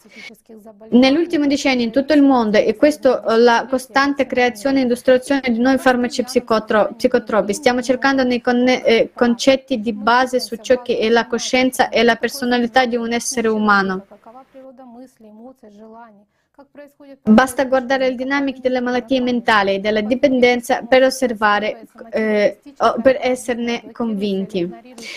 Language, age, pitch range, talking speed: Italian, 20-39, 225-265 Hz, 130 wpm